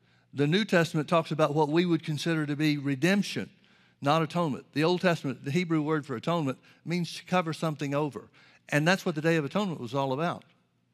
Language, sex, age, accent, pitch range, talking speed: English, male, 60-79, American, 135-165 Hz, 205 wpm